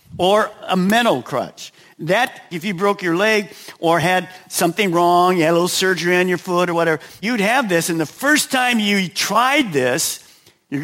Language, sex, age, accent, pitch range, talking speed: English, male, 50-69, American, 170-220 Hz, 195 wpm